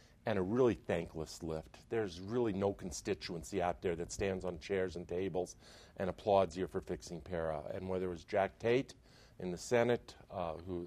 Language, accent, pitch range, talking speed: English, American, 90-105 Hz, 190 wpm